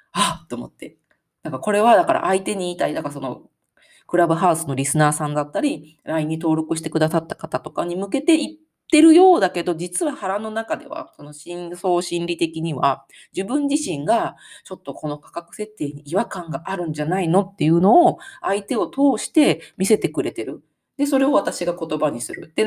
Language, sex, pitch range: Japanese, female, 155-215 Hz